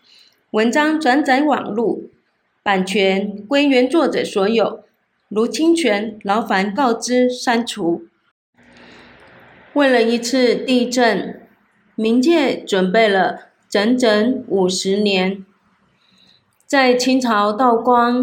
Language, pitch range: Chinese, 210-245 Hz